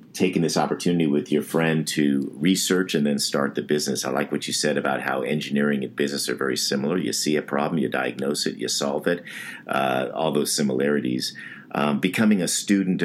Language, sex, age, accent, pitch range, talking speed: English, male, 50-69, American, 70-80 Hz, 200 wpm